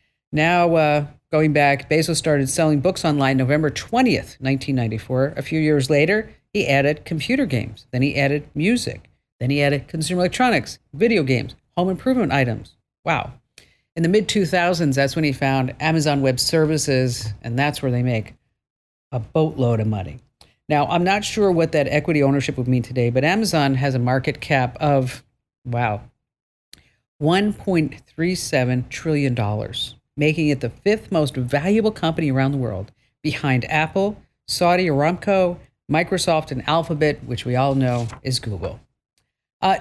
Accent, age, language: American, 50-69, English